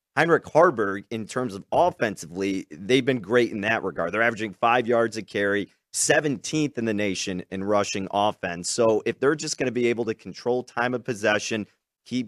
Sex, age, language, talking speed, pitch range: male, 30-49, English, 190 wpm, 95-120 Hz